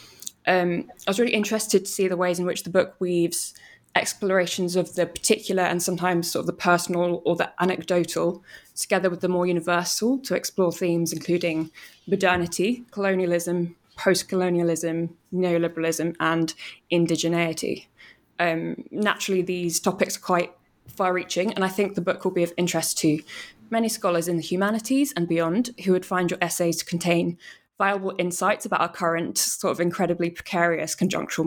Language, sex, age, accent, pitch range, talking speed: English, female, 20-39, British, 170-195 Hz, 160 wpm